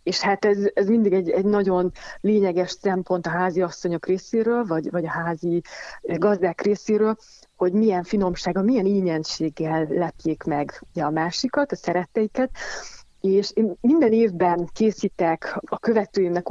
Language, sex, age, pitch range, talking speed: Hungarian, female, 30-49, 175-205 Hz, 140 wpm